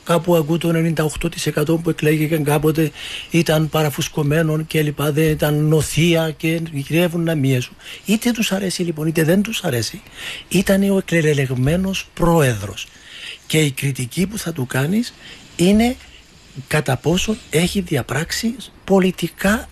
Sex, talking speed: male, 130 wpm